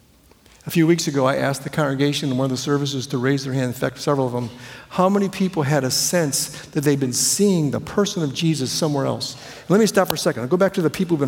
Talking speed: 275 wpm